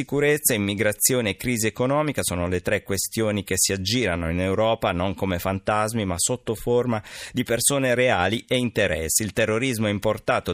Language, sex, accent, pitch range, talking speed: Italian, male, native, 90-125 Hz, 160 wpm